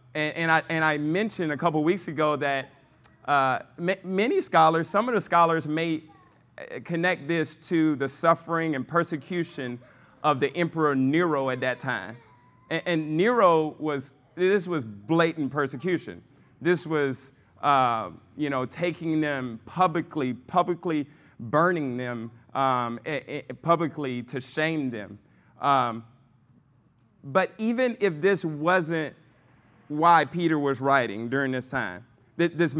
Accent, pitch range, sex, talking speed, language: American, 130-170 Hz, male, 135 wpm, English